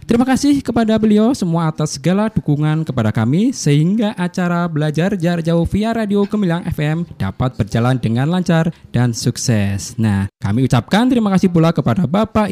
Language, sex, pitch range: Indonesian, male, 125-195 Hz